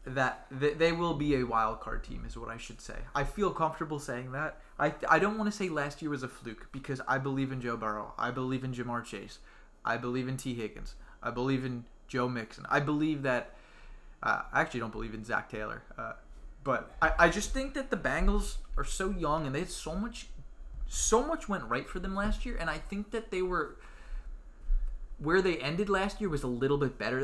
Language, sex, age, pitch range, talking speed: English, male, 20-39, 125-165 Hz, 225 wpm